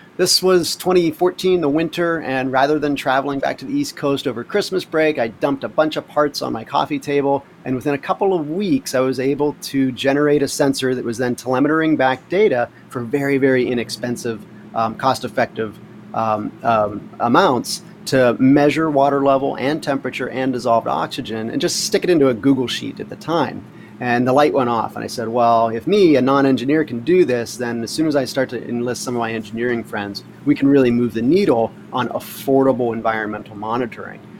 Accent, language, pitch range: American, English, 120-150 Hz